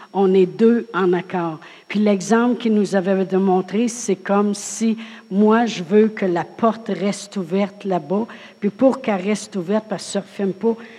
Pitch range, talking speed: 185-225 Hz, 180 wpm